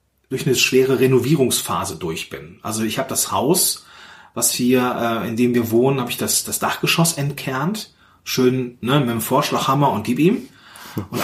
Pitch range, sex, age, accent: 120-165 Hz, male, 30-49, German